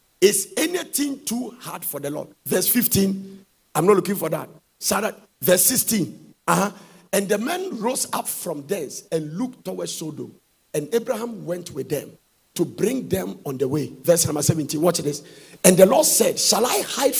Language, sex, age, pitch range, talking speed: English, male, 50-69, 160-210 Hz, 180 wpm